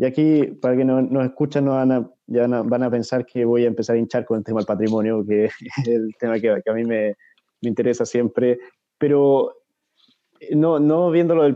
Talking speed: 230 wpm